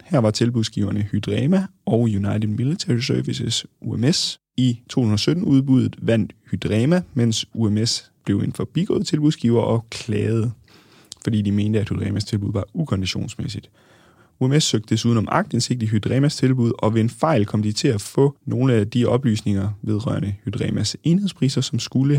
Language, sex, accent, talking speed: Danish, male, native, 150 wpm